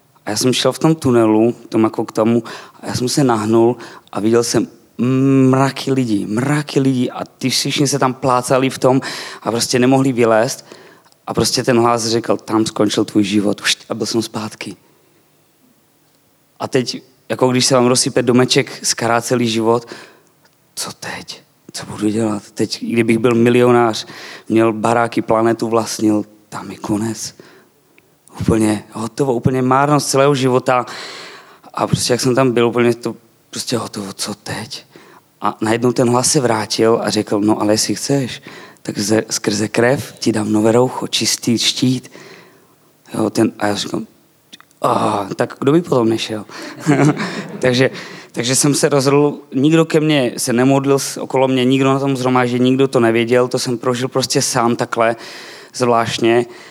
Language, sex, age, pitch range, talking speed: Czech, male, 20-39, 115-130 Hz, 155 wpm